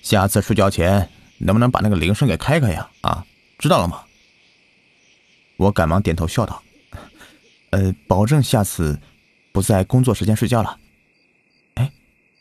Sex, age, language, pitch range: male, 30-49, Chinese, 80-110 Hz